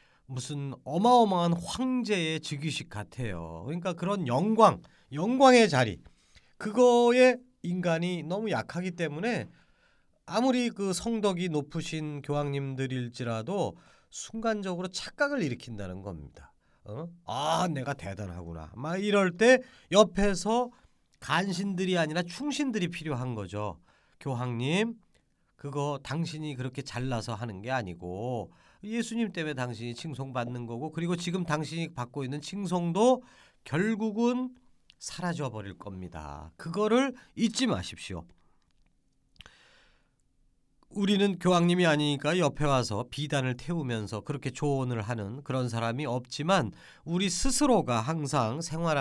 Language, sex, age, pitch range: Korean, male, 40-59, 125-195 Hz